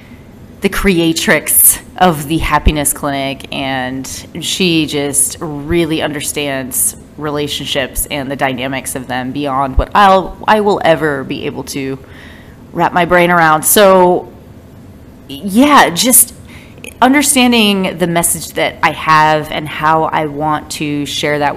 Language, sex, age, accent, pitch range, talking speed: English, female, 30-49, American, 140-185 Hz, 130 wpm